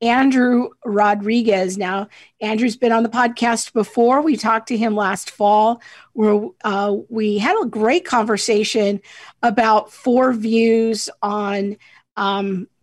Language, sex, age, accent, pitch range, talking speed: English, female, 50-69, American, 210-245 Hz, 120 wpm